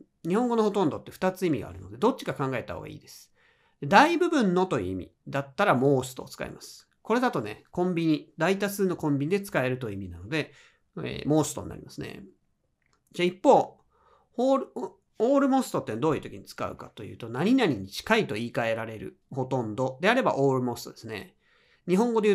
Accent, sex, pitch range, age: native, male, 130-190 Hz, 40-59